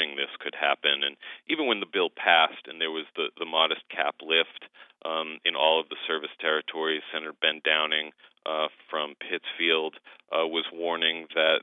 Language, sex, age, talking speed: English, male, 40-59, 175 wpm